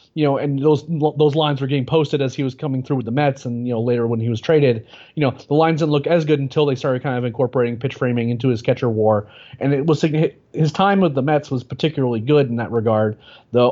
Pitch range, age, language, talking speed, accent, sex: 120-140 Hz, 30-49, English, 265 wpm, American, male